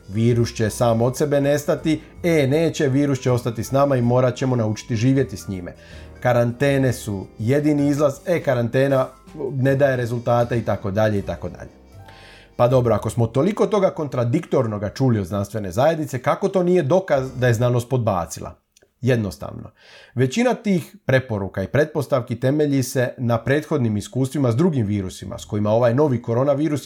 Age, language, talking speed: 40-59, Croatian, 155 wpm